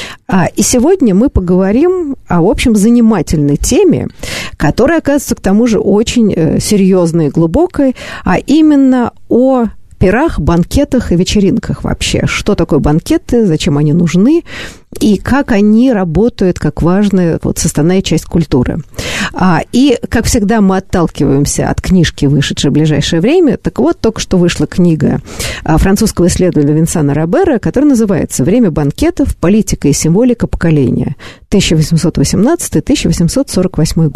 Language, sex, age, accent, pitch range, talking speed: Russian, female, 50-69, native, 160-235 Hz, 130 wpm